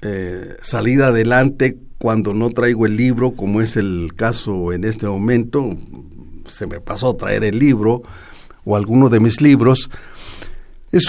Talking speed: 150 wpm